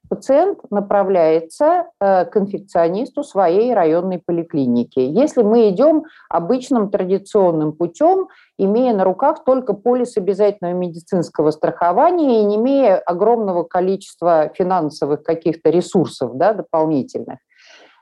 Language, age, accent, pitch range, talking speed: Russian, 50-69, native, 170-240 Hz, 105 wpm